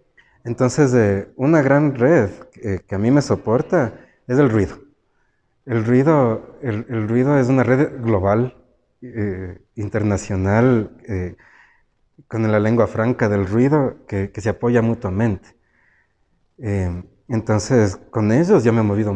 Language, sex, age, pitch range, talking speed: Spanish, male, 30-49, 100-120 Hz, 145 wpm